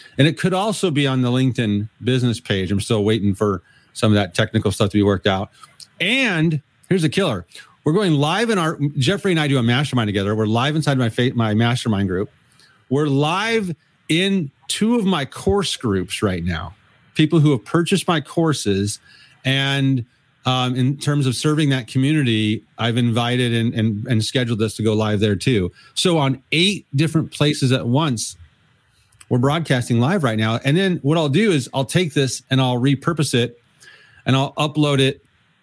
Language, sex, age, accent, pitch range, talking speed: English, male, 40-59, American, 120-155 Hz, 185 wpm